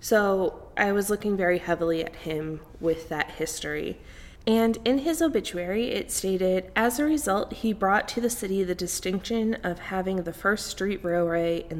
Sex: female